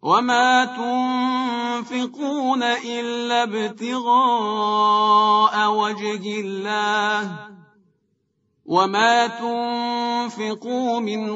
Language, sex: Persian, male